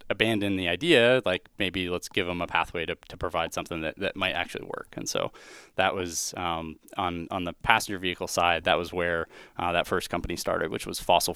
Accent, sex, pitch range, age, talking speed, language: American, male, 85-105 Hz, 20-39, 215 wpm, English